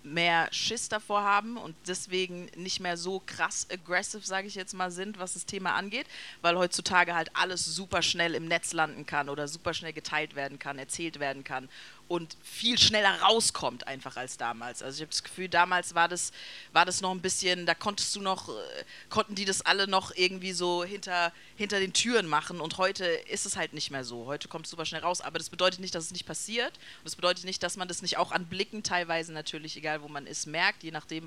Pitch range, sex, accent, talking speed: 165-195 Hz, female, German, 225 wpm